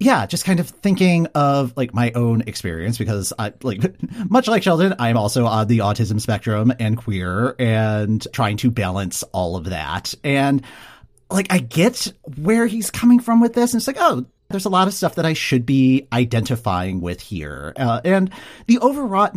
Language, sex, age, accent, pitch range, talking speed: English, male, 40-59, American, 105-165 Hz, 190 wpm